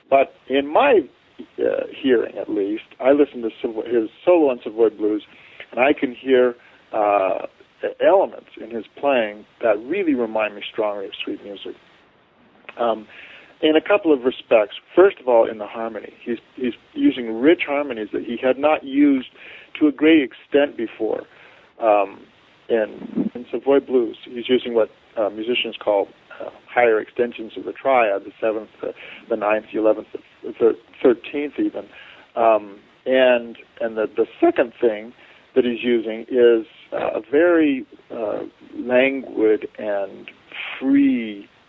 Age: 50-69